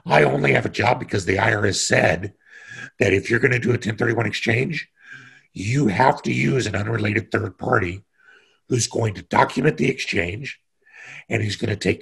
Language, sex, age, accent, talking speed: English, male, 60-79, American, 175 wpm